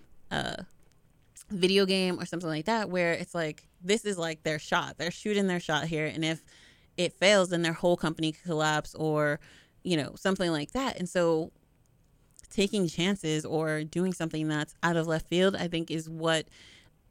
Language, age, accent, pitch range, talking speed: English, 30-49, American, 155-195 Hz, 180 wpm